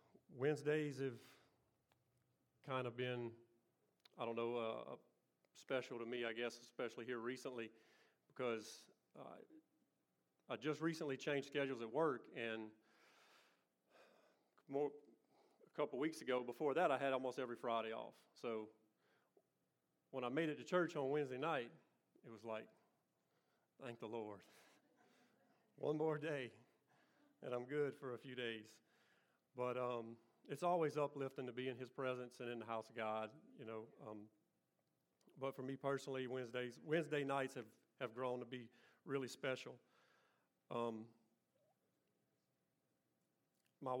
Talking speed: 135 wpm